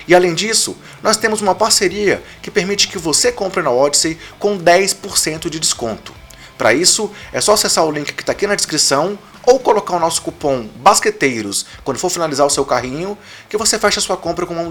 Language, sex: Portuguese, male